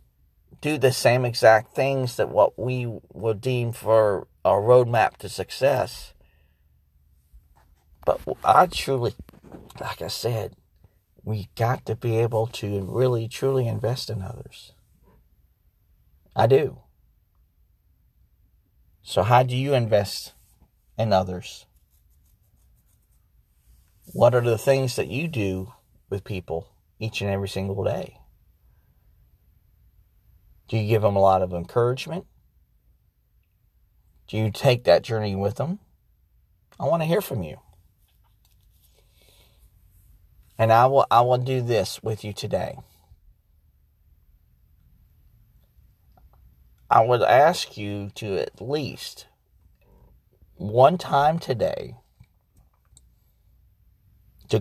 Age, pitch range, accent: 40-59, 85-115 Hz, American